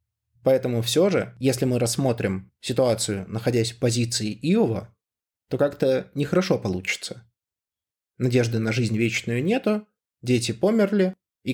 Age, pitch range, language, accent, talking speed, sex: 20-39, 110-140 Hz, Russian, native, 120 wpm, male